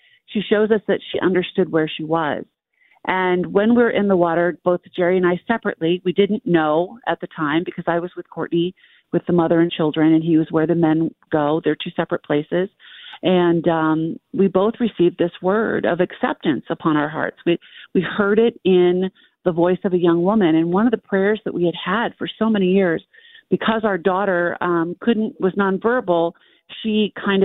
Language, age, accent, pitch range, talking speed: English, 40-59, American, 170-200 Hz, 200 wpm